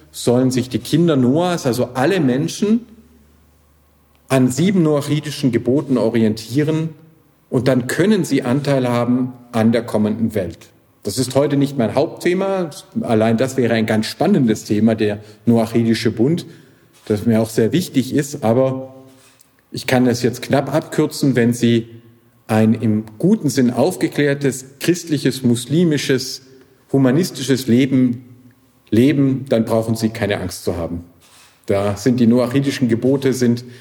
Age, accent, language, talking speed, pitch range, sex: 50-69, German, German, 135 wpm, 115-140 Hz, male